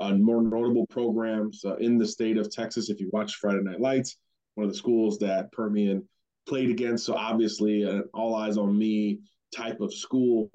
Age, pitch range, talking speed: 30-49, 105-115 Hz, 175 wpm